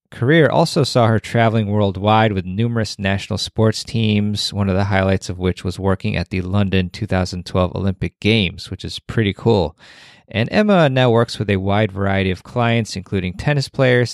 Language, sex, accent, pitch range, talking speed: English, male, American, 95-120 Hz, 180 wpm